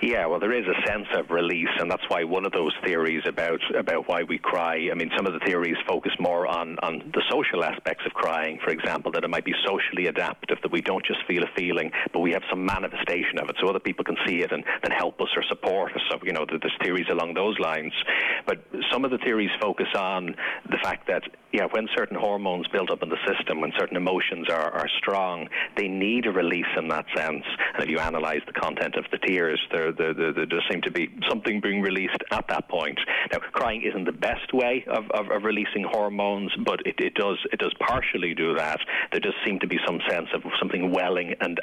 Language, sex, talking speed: English, male, 235 wpm